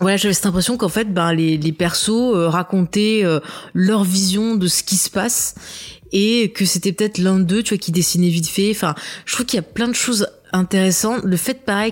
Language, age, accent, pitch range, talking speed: French, 20-39, French, 170-205 Hz, 225 wpm